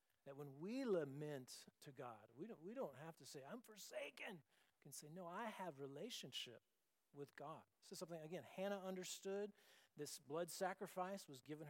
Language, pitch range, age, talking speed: English, 130-175 Hz, 50-69, 180 wpm